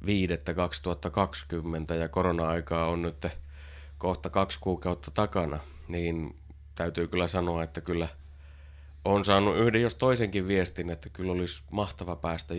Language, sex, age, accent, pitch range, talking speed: Finnish, male, 30-49, native, 75-100 Hz, 125 wpm